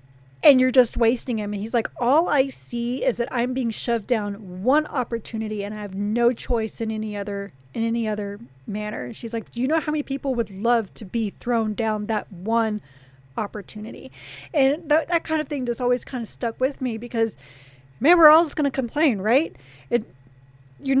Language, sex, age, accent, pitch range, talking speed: English, female, 30-49, American, 210-250 Hz, 210 wpm